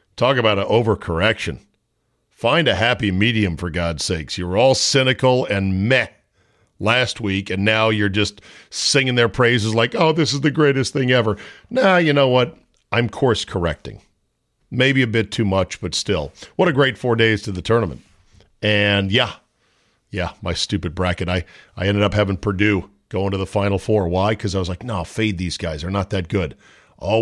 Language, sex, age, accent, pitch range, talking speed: English, male, 50-69, American, 95-120 Hz, 190 wpm